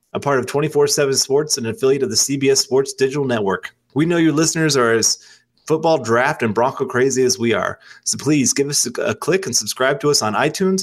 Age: 30-49